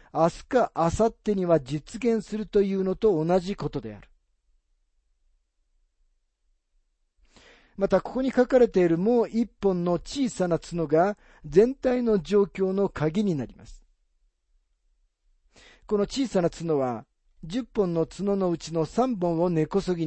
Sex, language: male, Japanese